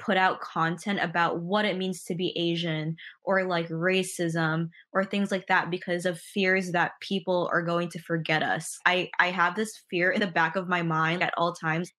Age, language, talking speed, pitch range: 20-39, English, 205 wpm, 170-195 Hz